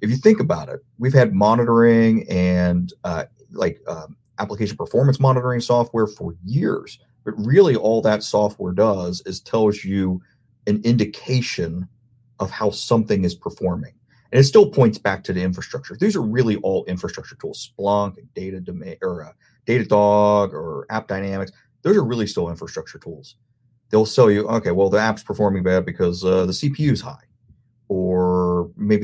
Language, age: English, 30-49